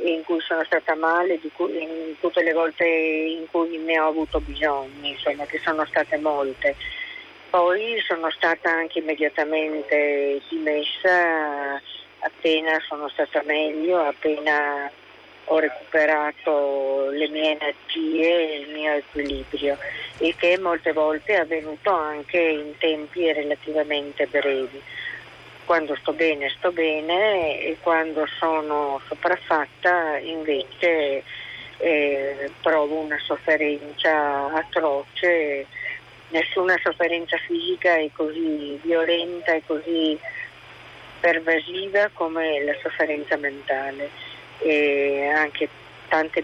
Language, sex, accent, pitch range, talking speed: Italian, female, native, 145-165 Hz, 110 wpm